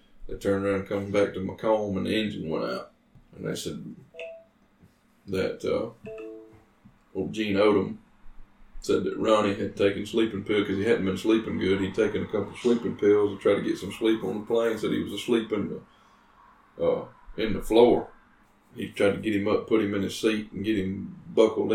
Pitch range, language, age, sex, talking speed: 100-110 Hz, English, 20-39, male, 205 wpm